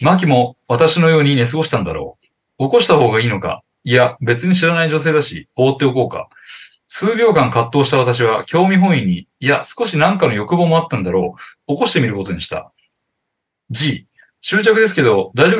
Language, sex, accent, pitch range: Japanese, male, native, 125-180 Hz